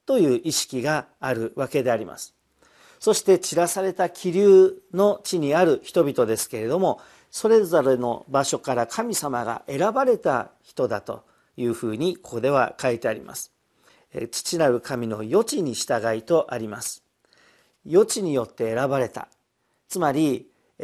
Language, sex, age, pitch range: Japanese, male, 50-69, 125-180 Hz